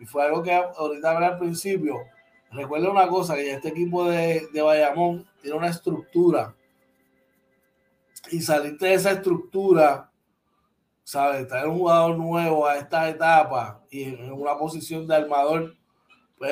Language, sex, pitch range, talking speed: Spanish, male, 145-180 Hz, 145 wpm